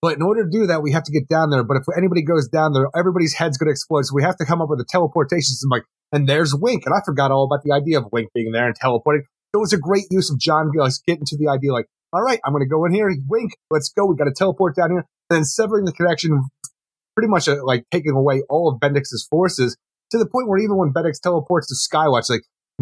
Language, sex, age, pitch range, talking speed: English, male, 30-49, 140-185 Hz, 285 wpm